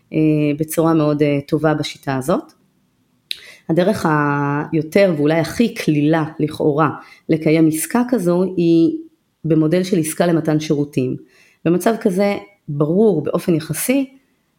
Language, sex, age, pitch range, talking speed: Hebrew, female, 30-49, 150-190 Hz, 105 wpm